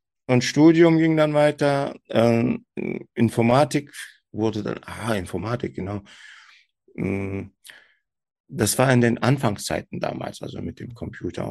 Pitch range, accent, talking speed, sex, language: 100-125 Hz, German, 115 wpm, male, German